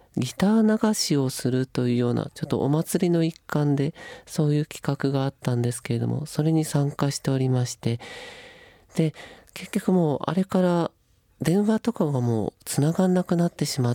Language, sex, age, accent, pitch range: Japanese, male, 40-59, native, 125-160 Hz